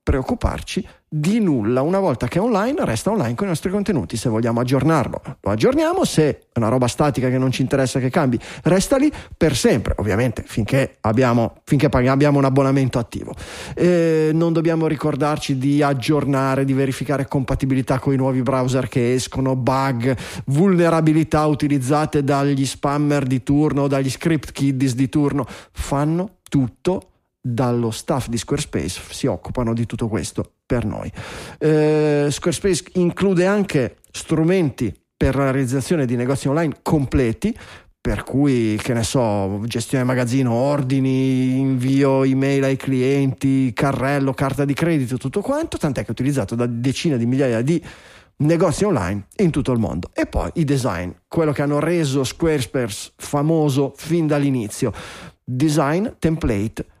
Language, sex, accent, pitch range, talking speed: Italian, male, native, 130-155 Hz, 150 wpm